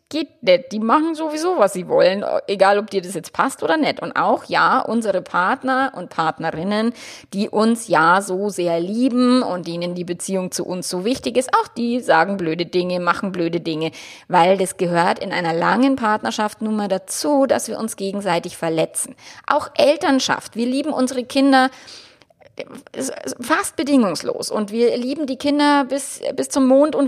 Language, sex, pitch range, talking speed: German, female, 190-255 Hz, 175 wpm